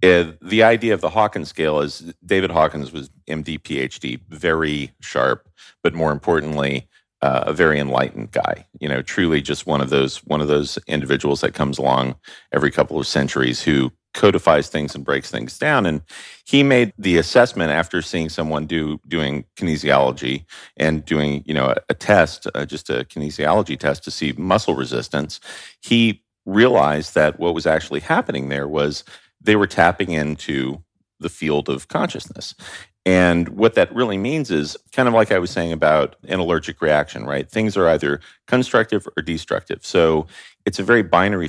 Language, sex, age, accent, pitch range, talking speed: English, male, 40-59, American, 70-90 Hz, 175 wpm